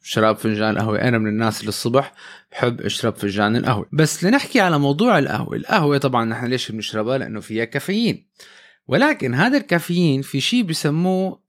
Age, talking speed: 20-39, 160 wpm